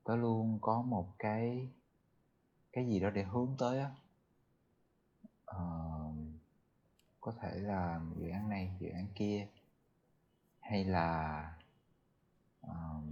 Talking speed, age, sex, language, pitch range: 115 wpm, 20-39, male, Vietnamese, 90-120 Hz